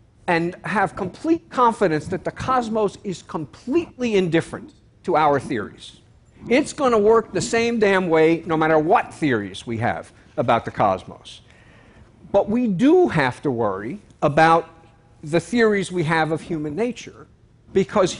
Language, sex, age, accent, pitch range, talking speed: Russian, male, 50-69, American, 135-205 Hz, 145 wpm